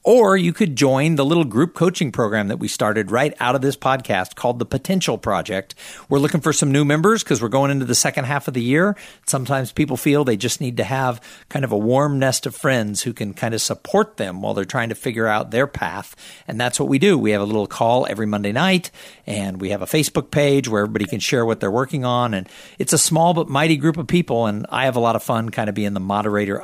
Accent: American